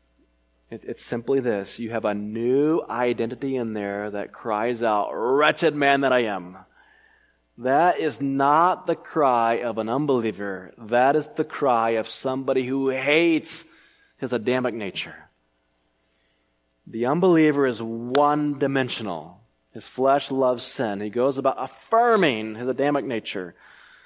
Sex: male